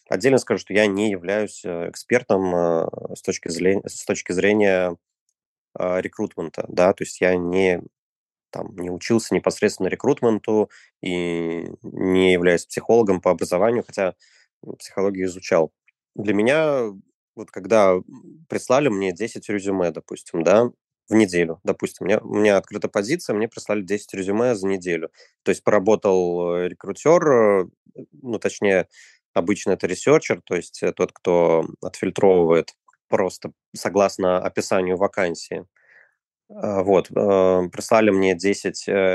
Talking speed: 115 wpm